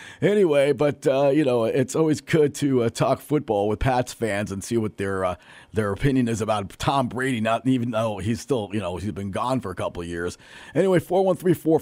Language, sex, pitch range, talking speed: English, male, 115-170 Hz, 235 wpm